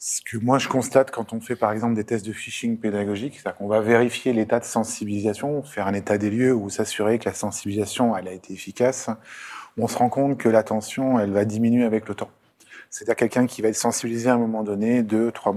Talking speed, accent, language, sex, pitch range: 230 wpm, French, French, male, 105-120 Hz